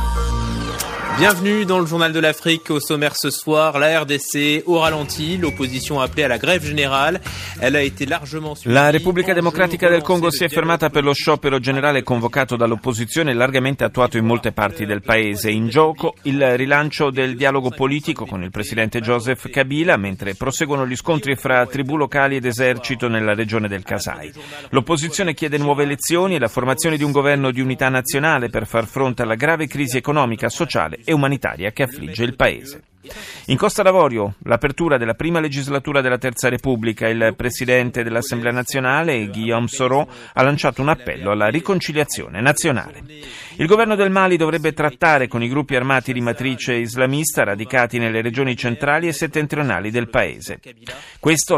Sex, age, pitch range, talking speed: male, 30-49, 115-150 Hz, 140 wpm